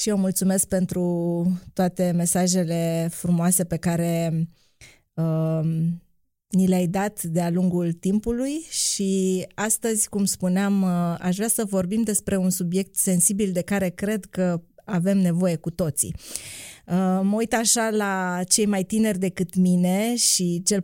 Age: 20-39